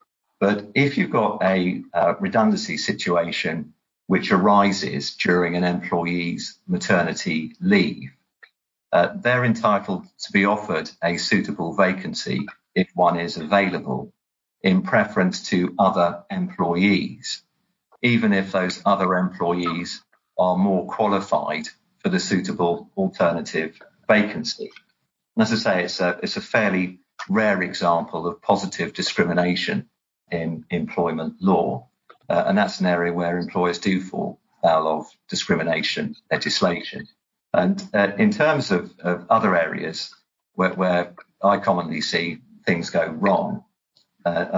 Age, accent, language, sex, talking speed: 50-69, British, English, male, 125 wpm